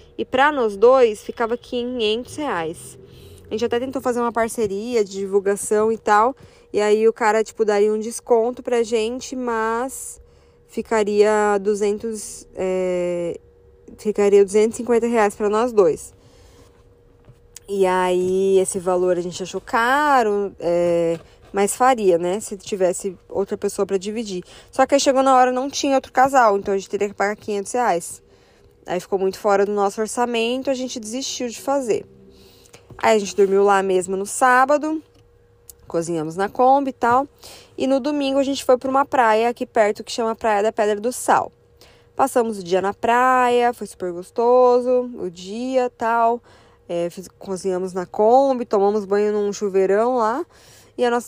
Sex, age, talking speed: female, 20-39, 165 wpm